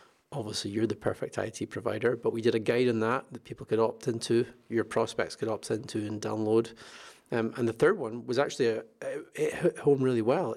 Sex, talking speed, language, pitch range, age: male, 220 wpm, English, 115-135 Hz, 30-49